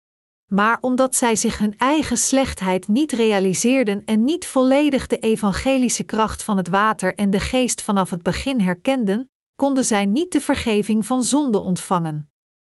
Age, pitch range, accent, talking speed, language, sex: 40-59, 205-255 Hz, Dutch, 155 wpm, Dutch, female